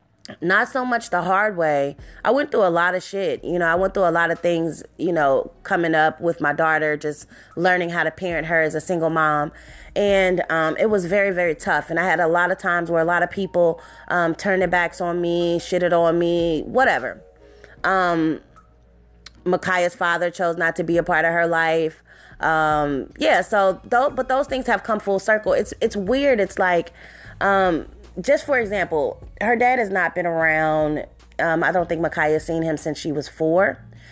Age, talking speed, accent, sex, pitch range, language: 20-39, 210 wpm, American, female, 160-195 Hz, English